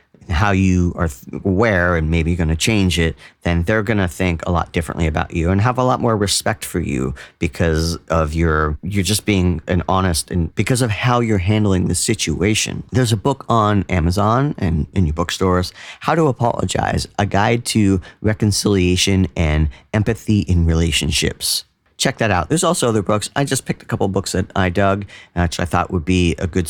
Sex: male